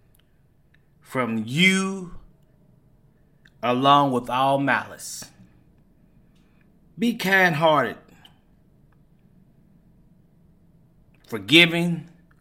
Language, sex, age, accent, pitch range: English, male, 30-49, American, 125-170 Hz